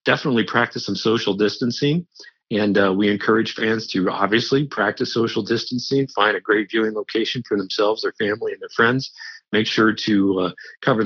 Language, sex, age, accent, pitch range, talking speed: English, male, 50-69, American, 105-125 Hz, 175 wpm